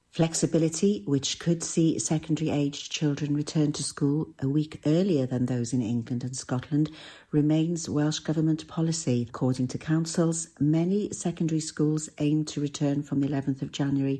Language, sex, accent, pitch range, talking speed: English, female, British, 135-160 Hz, 155 wpm